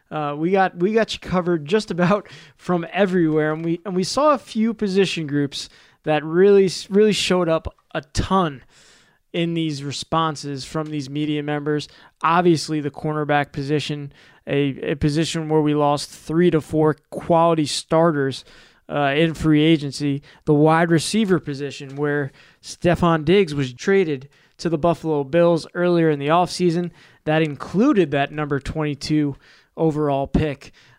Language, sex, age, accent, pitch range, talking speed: English, male, 20-39, American, 145-175 Hz, 155 wpm